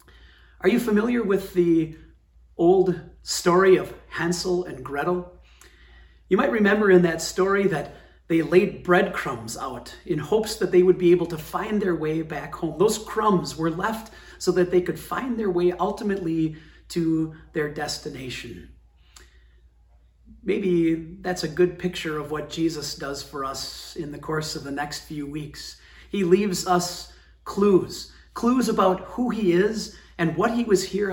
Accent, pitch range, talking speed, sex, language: American, 155-185 Hz, 160 wpm, male, English